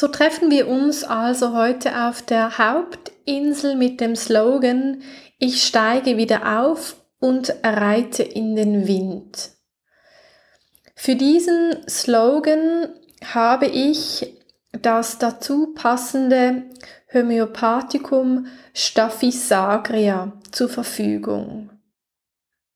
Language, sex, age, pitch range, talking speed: German, female, 30-49, 230-285 Hz, 85 wpm